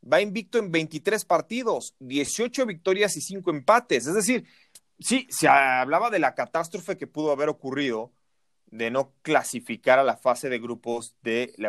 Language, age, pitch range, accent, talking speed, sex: Spanish, 30-49, 120-175 Hz, Mexican, 165 wpm, male